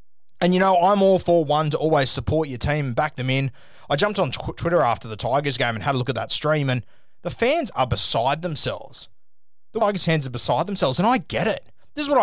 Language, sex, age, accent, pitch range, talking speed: English, male, 20-39, Australian, 125-185 Hz, 250 wpm